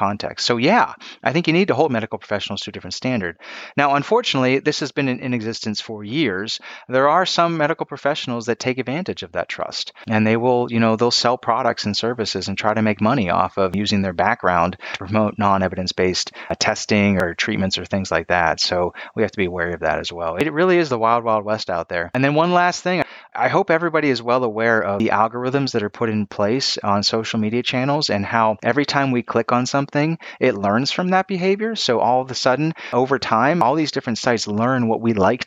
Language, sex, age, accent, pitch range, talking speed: English, male, 30-49, American, 105-140 Hz, 230 wpm